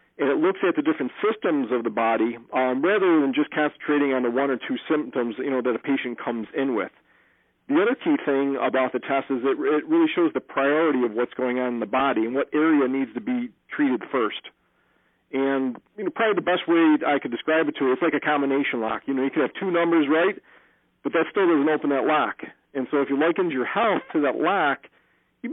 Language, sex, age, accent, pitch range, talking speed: English, male, 50-69, American, 130-180 Hz, 235 wpm